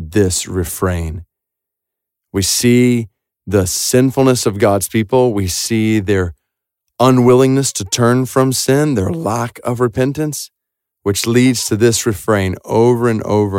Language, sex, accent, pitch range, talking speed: English, male, American, 100-170 Hz, 130 wpm